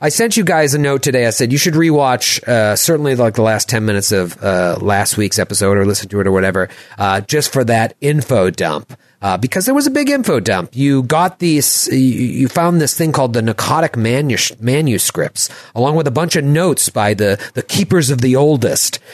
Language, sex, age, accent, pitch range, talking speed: English, male, 40-59, American, 115-155 Hz, 210 wpm